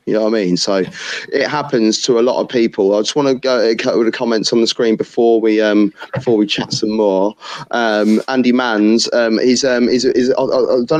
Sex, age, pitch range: male, 20-39, 115-140 Hz